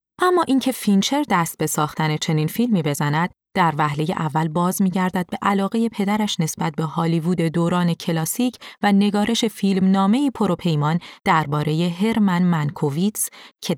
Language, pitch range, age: Persian, 165-205 Hz, 30-49